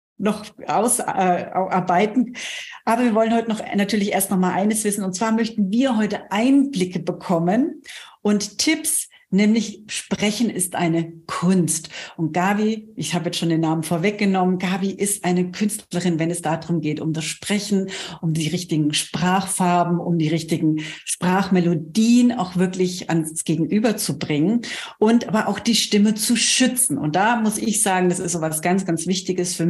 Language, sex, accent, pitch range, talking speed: German, female, German, 165-210 Hz, 170 wpm